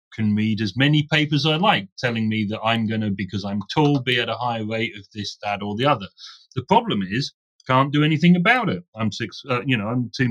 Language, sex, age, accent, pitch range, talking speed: English, male, 40-59, British, 110-160 Hz, 245 wpm